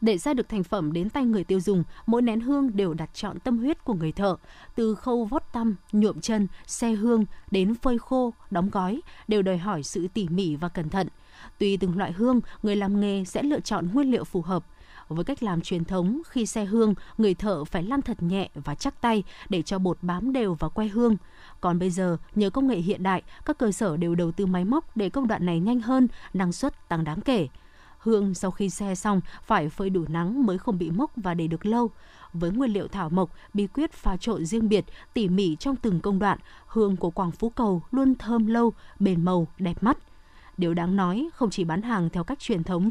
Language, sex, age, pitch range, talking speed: Vietnamese, female, 20-39, 180-235 Hz, 230 wpm